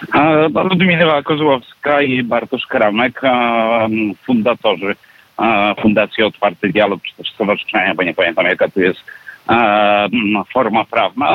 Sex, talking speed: male, 105 wpm